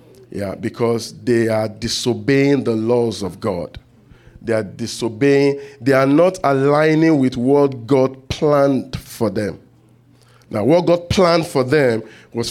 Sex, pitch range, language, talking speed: male, 120-155 Hz, English, 140 wpm